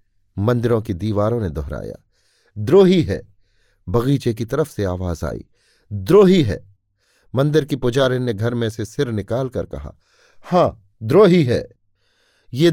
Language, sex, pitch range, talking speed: Hindi, male, 100-130 Hz, 135 wpm